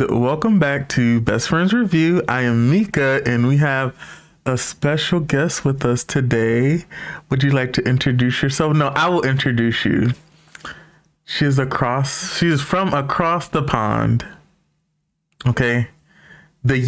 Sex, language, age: male, English, 20-39